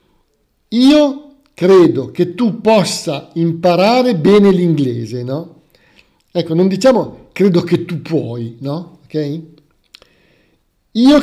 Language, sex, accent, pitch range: Italian, male, native, 150-240 Hz